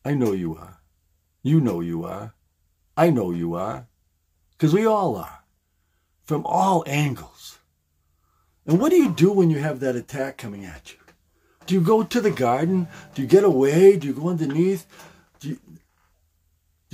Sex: male